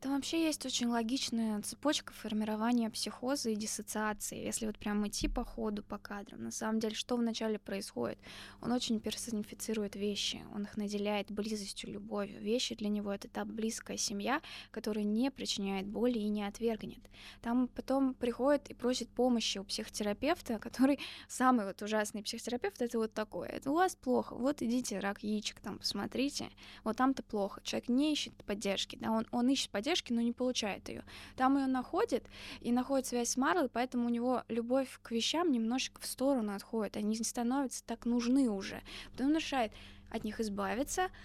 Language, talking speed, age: Russian, 170 wpm, 20-39